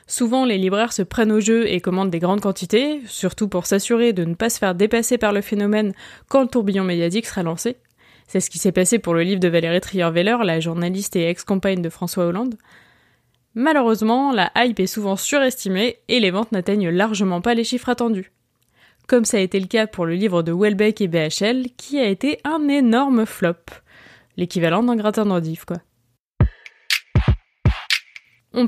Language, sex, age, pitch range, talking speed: French, female, 20-39, 185-240 Hz, 185 wpm